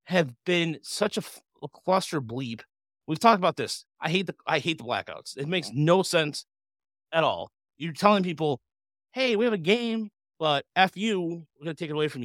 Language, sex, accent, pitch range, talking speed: English, male, American, 115-155 Hz, 210 wpm